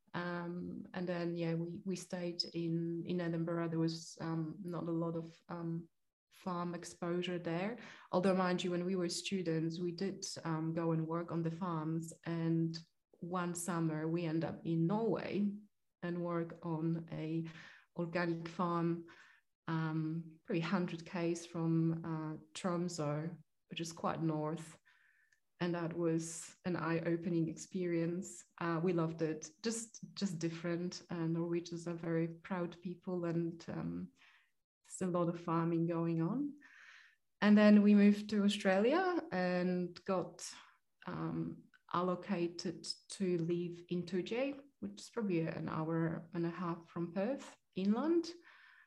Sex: female